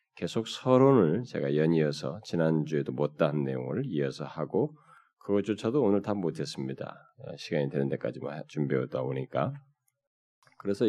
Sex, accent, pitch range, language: male, native, 75-115 Hz, Korean